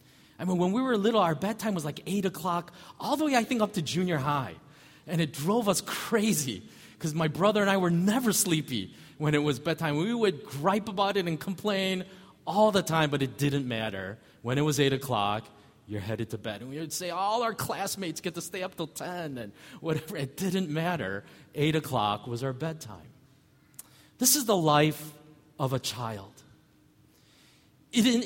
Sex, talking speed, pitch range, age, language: male, 195 wpm, 140-195 Hz, 30-49, English